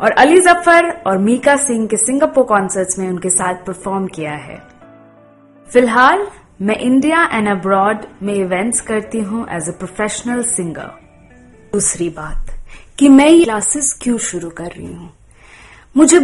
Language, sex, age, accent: Gujarati, female, 20-39, native